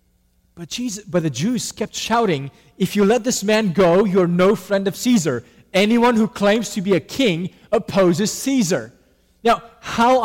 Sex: male